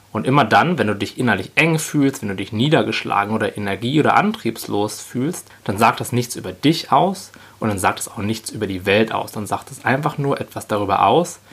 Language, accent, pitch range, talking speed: German, German, 105-135 Hz, 225 wpm